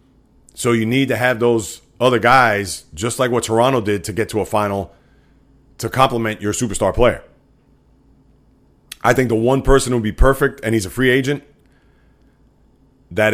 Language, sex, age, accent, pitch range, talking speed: English, male, 30-49, American, 110-135 Hz, 165 wpm